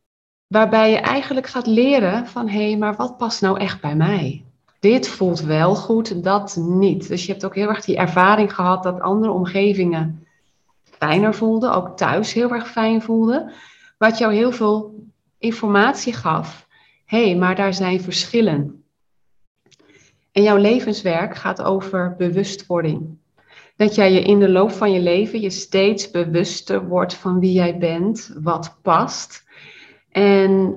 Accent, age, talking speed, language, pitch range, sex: Dutch, 30-49, 155 wpm, Dutch, 180-215 Hz, female